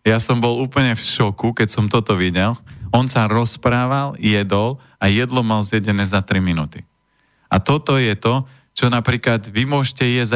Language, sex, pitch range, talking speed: Slovak, male, 100-115 Hz, 175 wpm